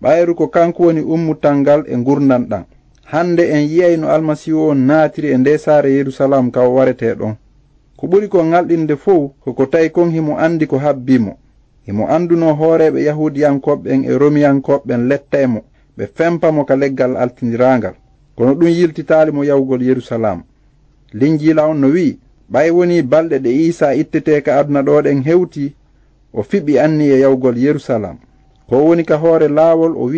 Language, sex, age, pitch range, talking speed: English, male, 50-69, 140-170 Hz, 145 wpm